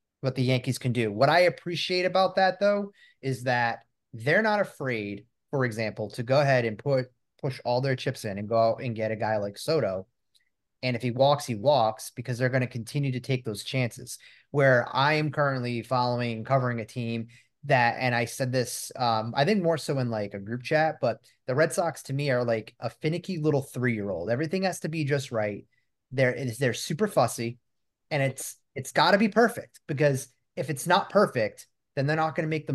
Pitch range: 120-150 Hz